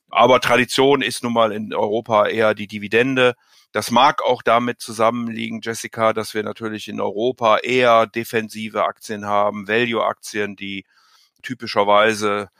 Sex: male